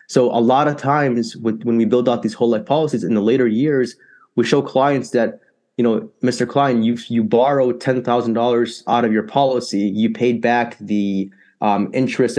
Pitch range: 110-130 Hz